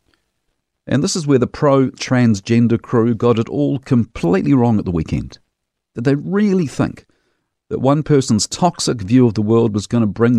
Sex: male